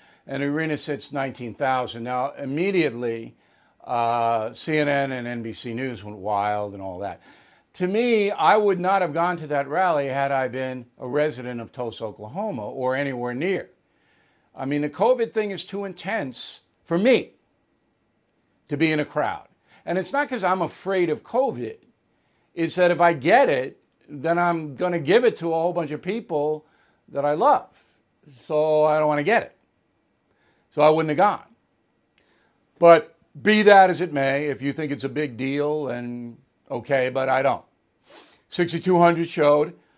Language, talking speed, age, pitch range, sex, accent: English, 170 wpm, 60-79, 130-170 Hz, male, American